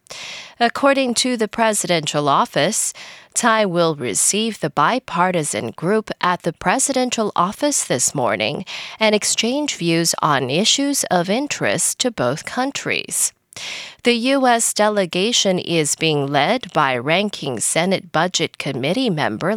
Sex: female